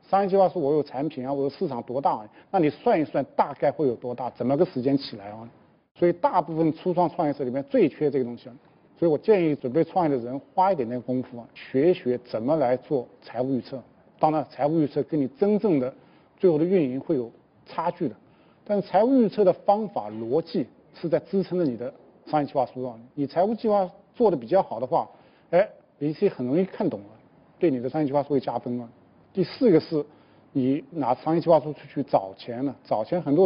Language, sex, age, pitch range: Chinese, male, 50-69, 125-180 Hz